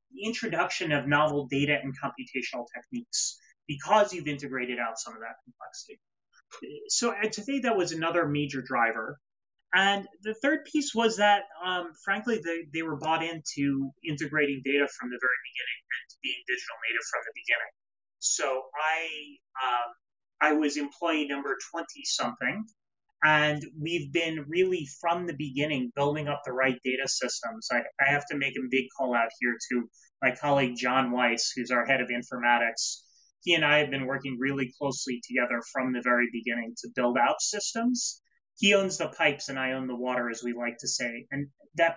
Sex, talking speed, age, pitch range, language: male, 175 wpm, 30-49, 130-185 Hz, English